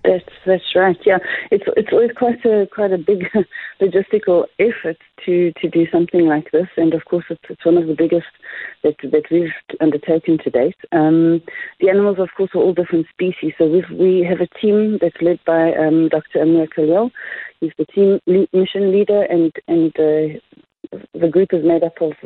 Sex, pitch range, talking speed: female, 155-180 Hz, 195 wpm